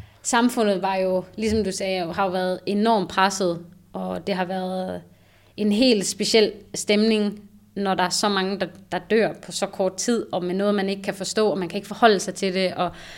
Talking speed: 220 wpm